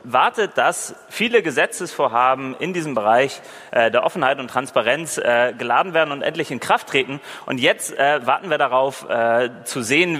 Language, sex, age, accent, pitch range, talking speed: German, male, 30-49, German, 120-165 Hz, 145 wpm